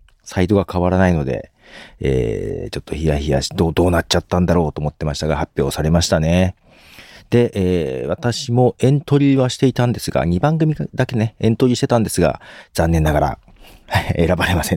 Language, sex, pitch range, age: Japanese, male, 85-140 Hz, 40-59